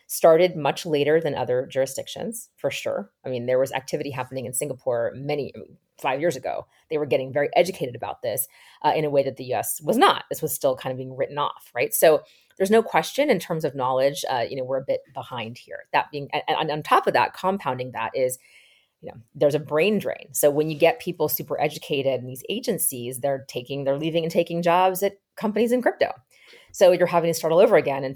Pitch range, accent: 135-180 Hz, American